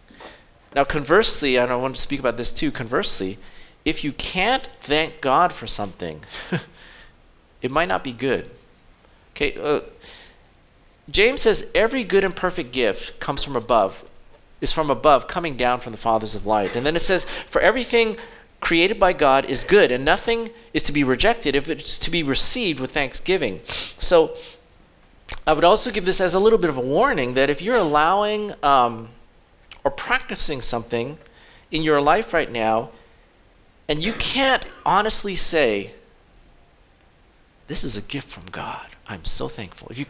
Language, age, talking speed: English, 40-59, 165 wpm